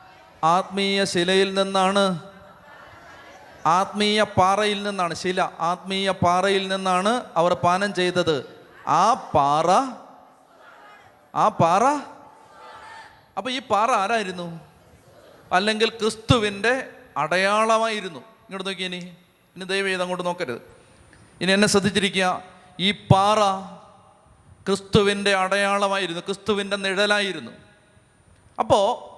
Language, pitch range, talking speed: Malayalam, 190-220 Hz, 85 wpm